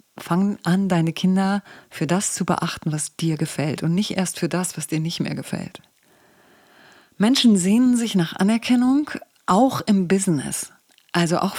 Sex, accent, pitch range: female, German, 165-205 Hz